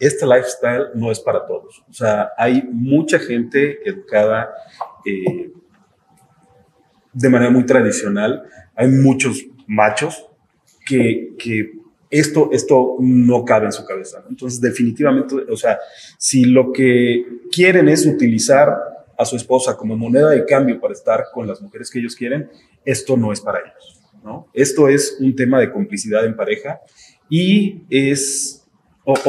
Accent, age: Mexican, 30-49